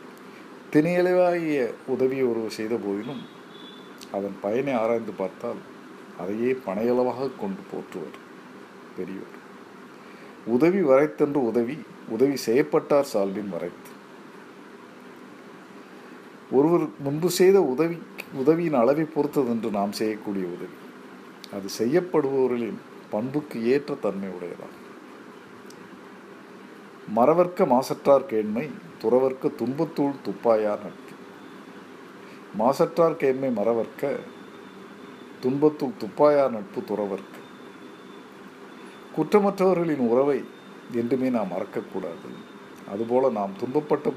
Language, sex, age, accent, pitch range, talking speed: Tamil, male, 50-69, native, 110-155 Hz, 60 wpm